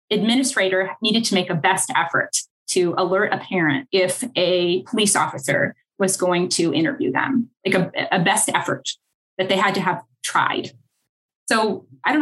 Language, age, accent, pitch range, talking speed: English, 20-39, American, 175-220 Hz, 165 wpm